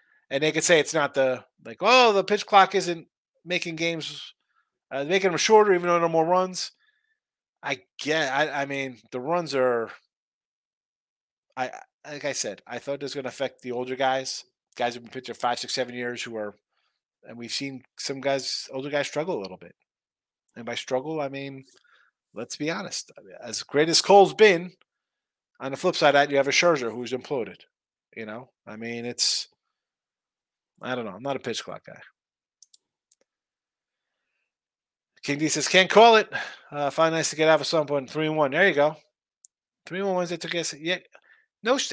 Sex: male